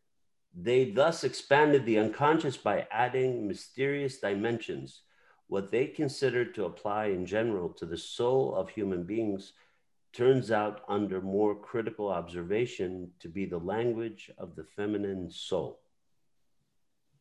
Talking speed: 125 wpm